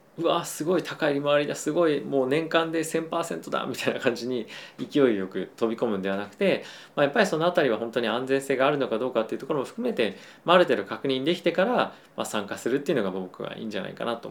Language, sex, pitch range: Japanese, male, 105-140 Hz